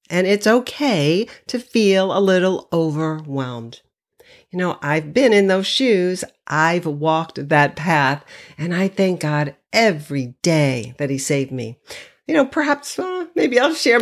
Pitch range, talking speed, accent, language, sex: 165-225 Hz, 155 wpm, American, English, female